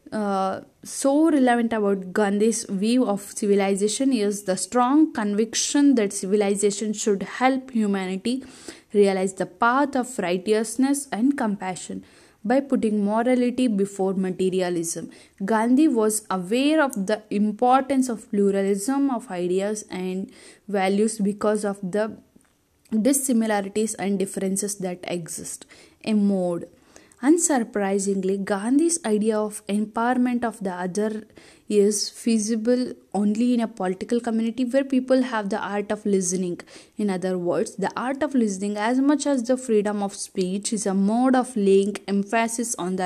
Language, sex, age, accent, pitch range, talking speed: English, female, 10-29, Indian, 200-245 Hz, 130 wpm